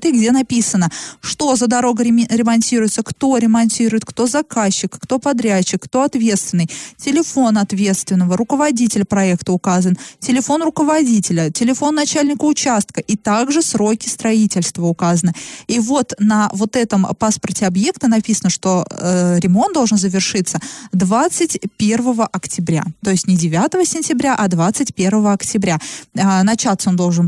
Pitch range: 190-255 Hz